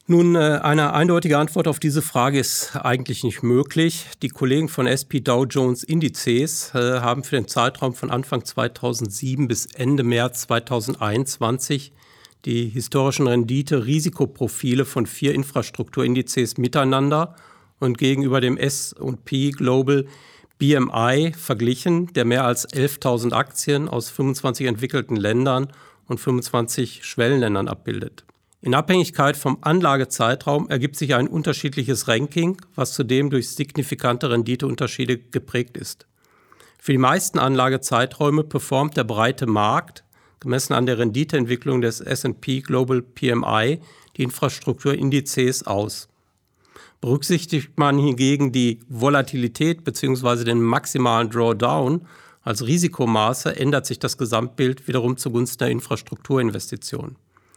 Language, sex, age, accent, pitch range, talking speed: German, male, 50-69, German, 120-145 Hz, 115 wpm